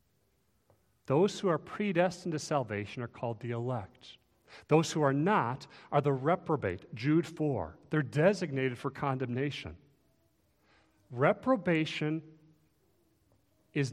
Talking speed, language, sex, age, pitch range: 110 wpm, English, male, 40-59, 120-160 Hz